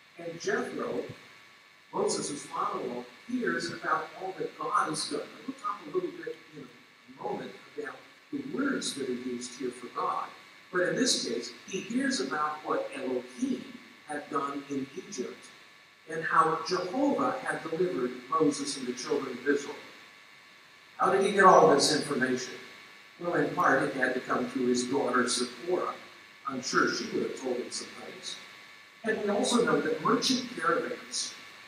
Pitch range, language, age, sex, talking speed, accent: 125-195 Hz, English, 50-69, male, 165 wpm, American